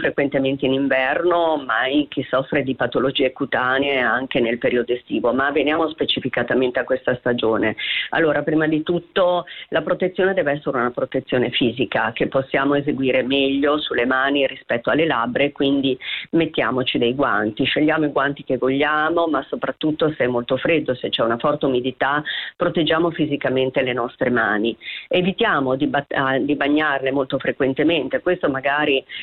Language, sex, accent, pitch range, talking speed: Italian, female, native, 135-160 Hz, 145 wpm